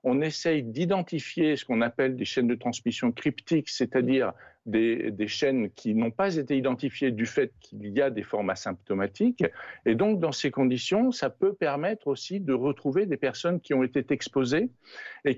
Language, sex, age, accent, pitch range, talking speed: French, male, 60-79, French, 120-170 Hz, 180 wpm